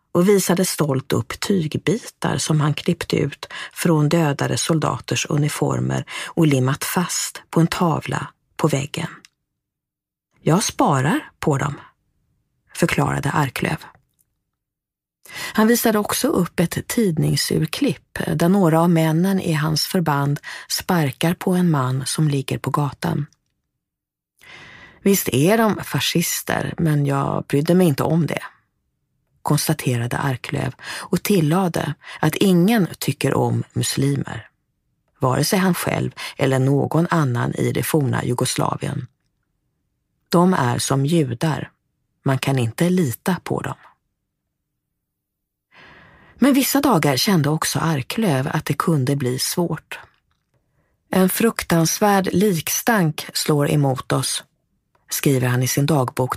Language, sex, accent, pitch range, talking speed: English, female, Swedish, 135-175 Hz, 120 wpm